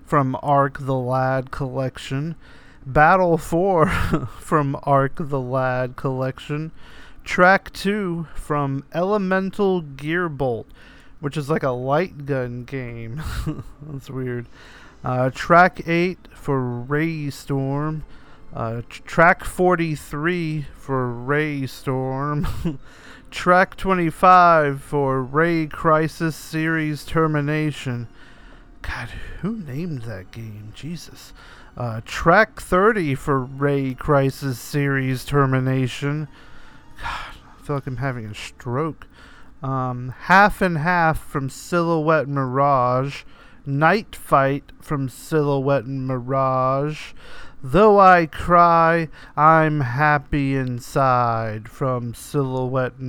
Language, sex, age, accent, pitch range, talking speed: English, male, 40-59, American, 130-160 Hz, 95 wpm